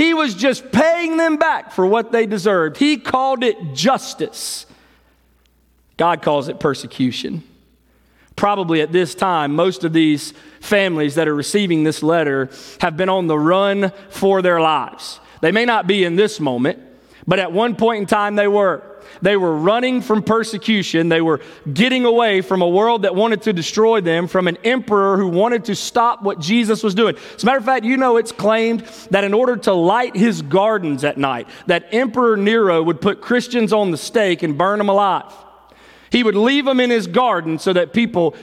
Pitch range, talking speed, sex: 180-240 Hz, 190 wpm, male